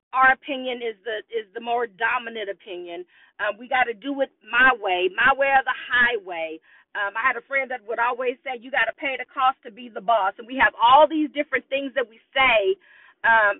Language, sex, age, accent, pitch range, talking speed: English, female, 40-59, American, 240-320 Hz, 225 wpm